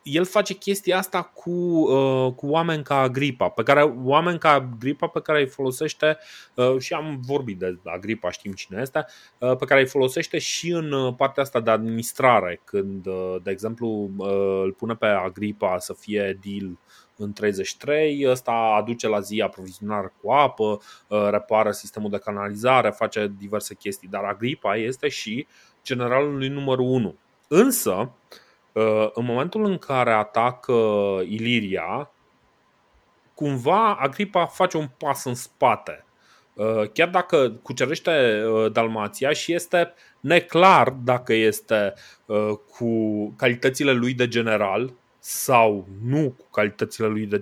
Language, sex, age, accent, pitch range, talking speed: Romanian, male, 20-39, native, 105-145 Hz, 130 wpm